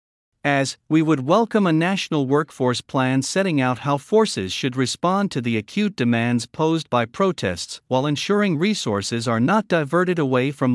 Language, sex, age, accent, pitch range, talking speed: English, male, 50-69, American, 115-170 Hz, 160 wpm